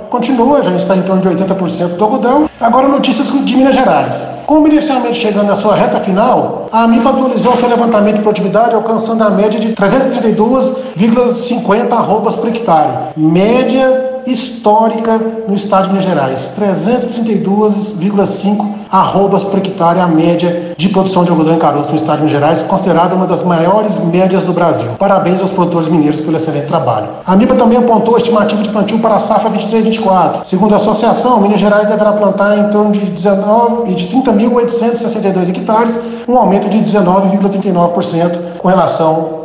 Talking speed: 165 wpm